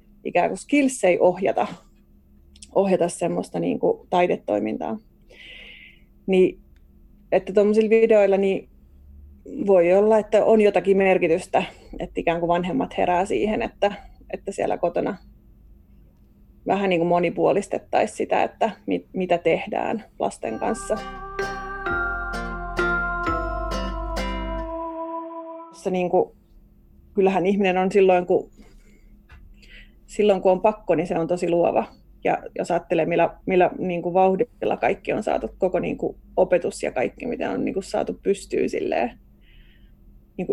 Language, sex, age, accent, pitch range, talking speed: Finnish, female, 30-49, native, 170-210 Hz, 115 wpm